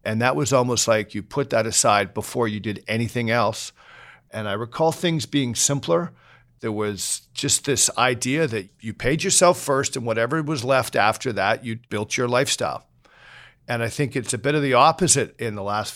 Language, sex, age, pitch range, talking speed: English, male, 50-69, 115-140 Hz, 195 wpm